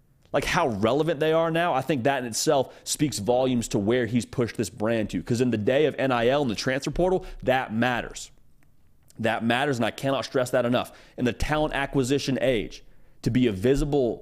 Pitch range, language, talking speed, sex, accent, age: 115-155 Hz, English, 205 wpm, male, American, 30-49